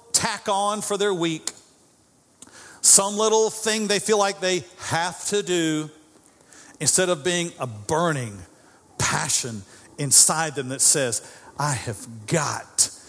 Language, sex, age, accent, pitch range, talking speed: English, male, 50-69, American, 130-190 Hz, 130 wpm